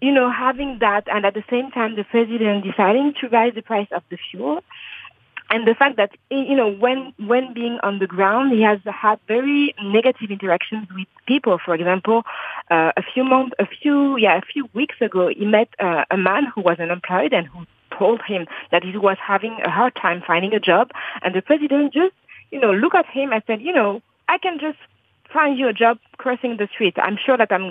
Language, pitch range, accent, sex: English, 190-260 Hz, French, female